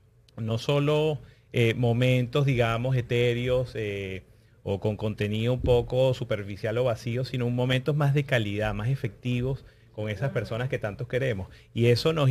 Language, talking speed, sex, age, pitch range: Spanish, 150 wpm, male, 30-49, 110-130 Hz